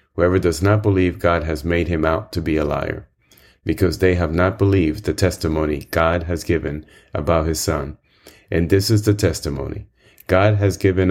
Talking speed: 185 wpm